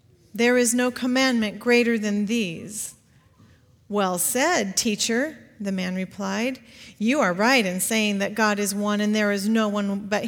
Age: 40-59